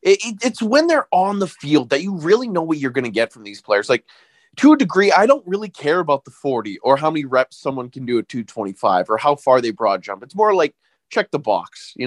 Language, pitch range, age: English, 130-195 Hz, 20-39